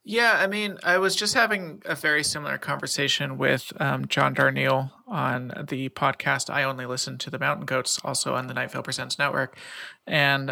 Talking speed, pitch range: 190 wpm, 135-165 Hz